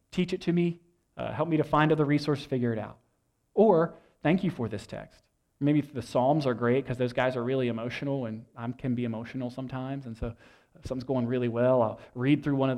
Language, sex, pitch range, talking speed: English, male, 125-165 Hz, 230 wpm